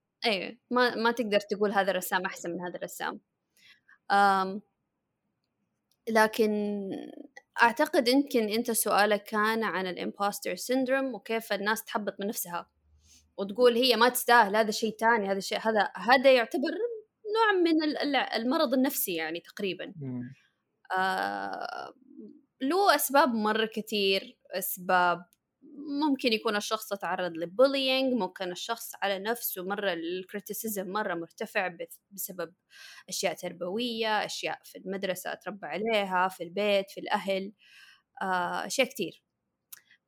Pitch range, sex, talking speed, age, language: 195-250 Hz, female, 115 wpm, 20-39, Arabic